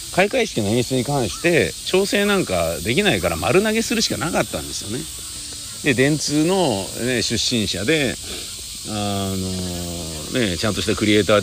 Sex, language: male, Japanese